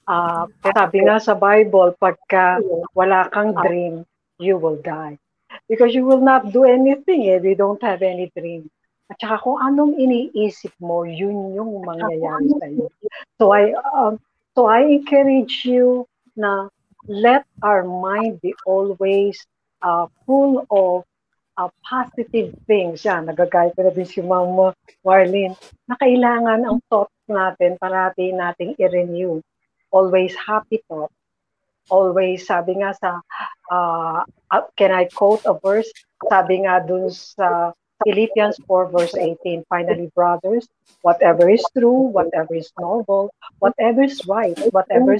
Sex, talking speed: female, 135 wpm